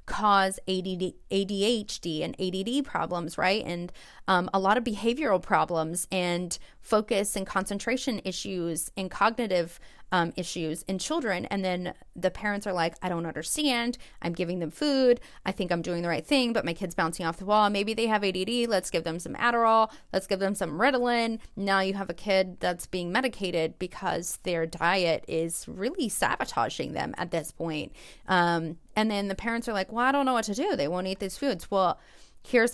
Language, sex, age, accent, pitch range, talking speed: English, female, 30-49, American, 180-225 Hz, 190 wpm